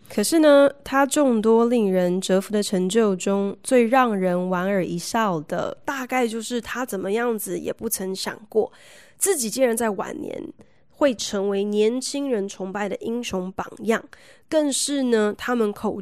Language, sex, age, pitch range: Chinese, female, 20-39, 200-250 Hz